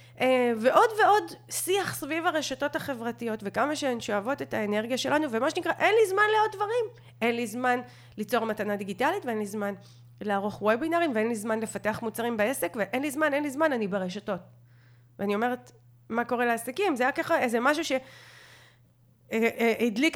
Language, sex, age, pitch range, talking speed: Hebrew, female, 30-49, 205-295 Hz, 165 wpm